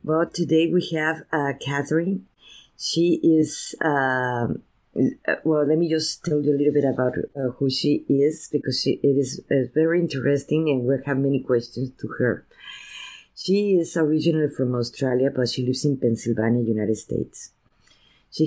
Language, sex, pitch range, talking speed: English, female, 125-155 Hz, 160 wpm